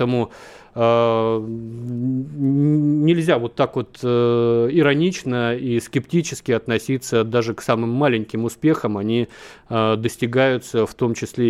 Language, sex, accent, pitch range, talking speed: Russian, male, native, 115-140 Hz, 105 wpm